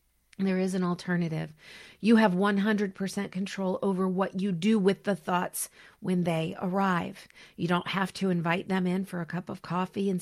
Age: 40-59